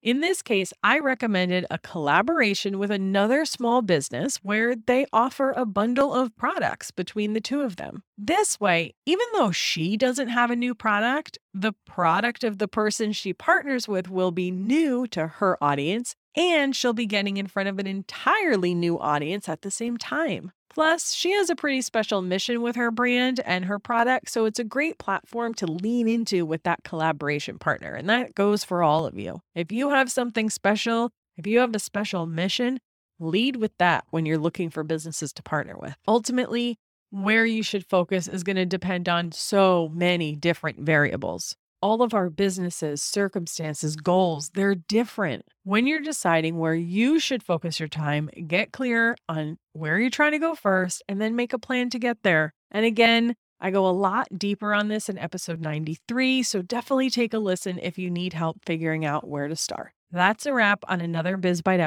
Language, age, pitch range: English, 30-49, 175-240 Hz